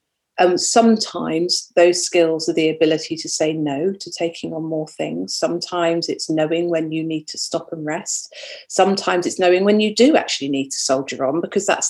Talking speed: 190 wpm